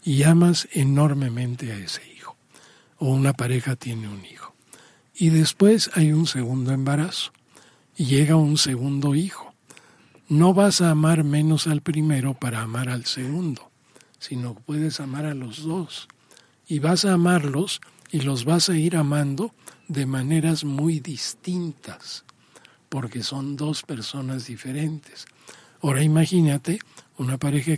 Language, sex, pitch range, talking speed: Spanish, male, 135-165 Hz, 135 wpm